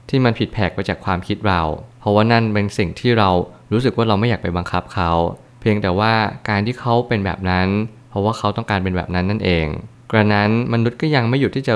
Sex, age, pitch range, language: male, 20-39, 95-115 Hz, Thai